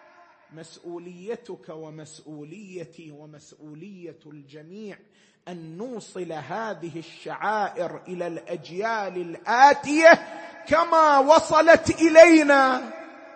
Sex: male